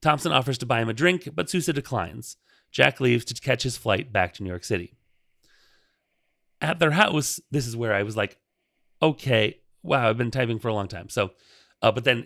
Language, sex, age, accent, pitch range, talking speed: English, male, 30-49, American, 115-155 Hz, 210 wpm